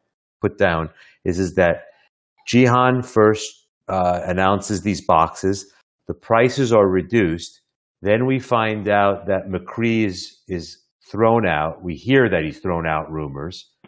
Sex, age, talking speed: male, 50-69, 140 wpm